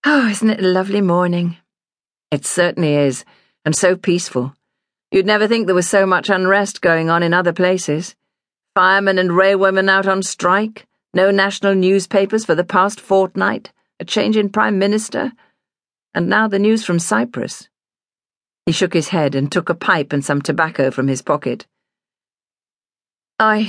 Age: 50-69